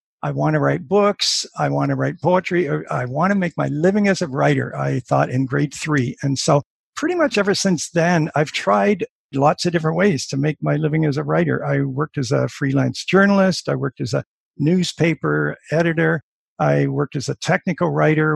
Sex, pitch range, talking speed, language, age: male, 140-175 Hz, 205 wpm, English, 50-69